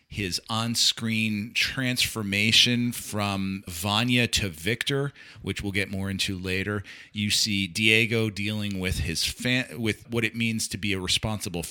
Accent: American